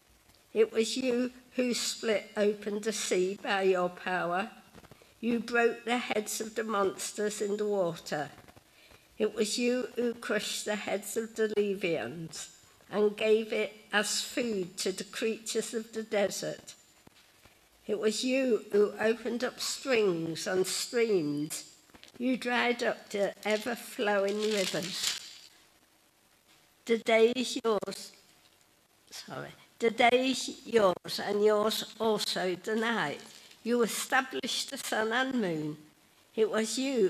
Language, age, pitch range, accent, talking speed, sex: English, 60-79, 195-235 Hz, British, 130 wpm, female